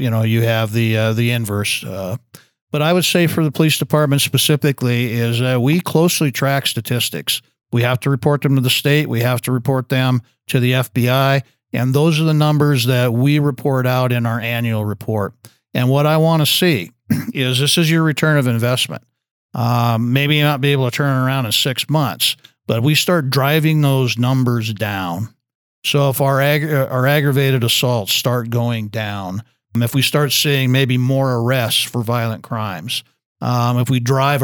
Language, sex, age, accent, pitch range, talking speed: English, male, 50-69, American, 120-145 Hz, 190 wpm